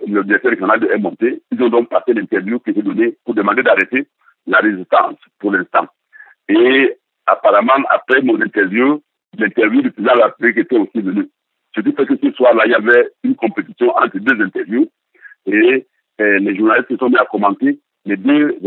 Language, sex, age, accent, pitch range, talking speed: French, male, 60-79, French, 300-400 Hz, 185 wpm